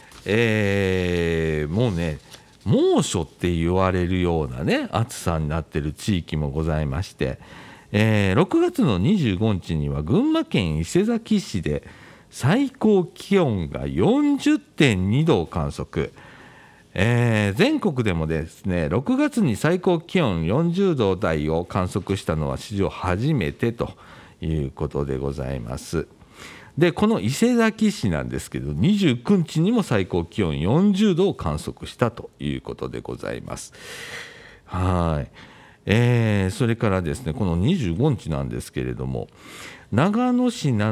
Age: 50-69